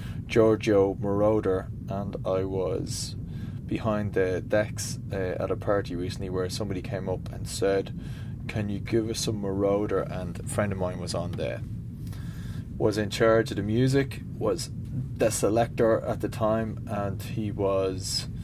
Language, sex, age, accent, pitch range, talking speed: English, male, 20-39, Irish, 100-120 Hz, 155 wpm